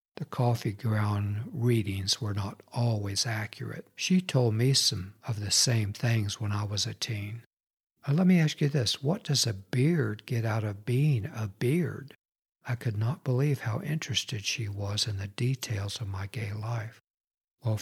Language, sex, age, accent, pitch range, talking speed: English, male, 60-79, American, 105-125 Hz, 175 wpm